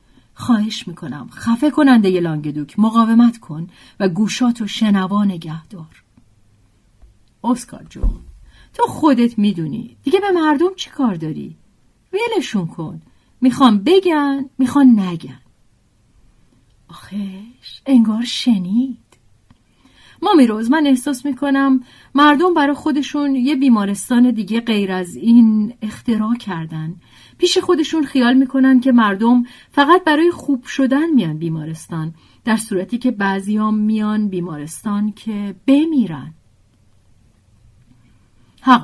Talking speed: 105 wpm